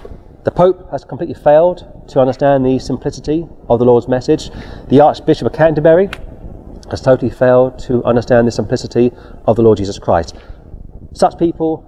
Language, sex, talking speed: English, male, 155 wpm